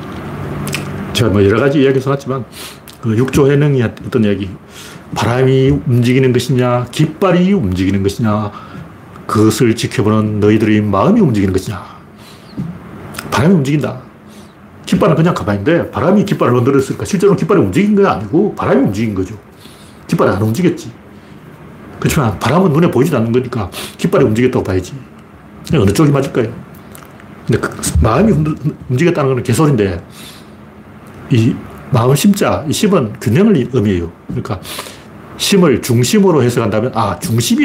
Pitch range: 105-150 Hz